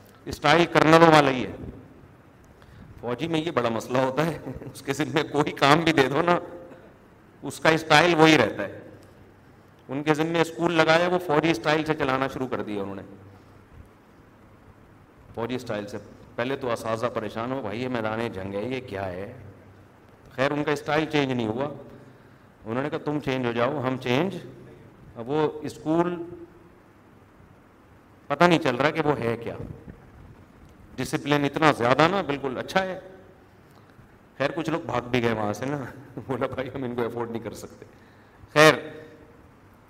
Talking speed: 170 wpm